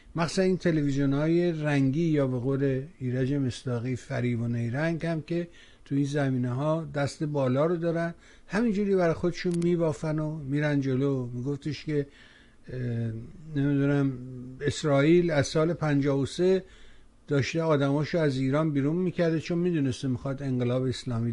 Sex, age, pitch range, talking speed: male, 60-79, 125-155 Hz, 130 wpm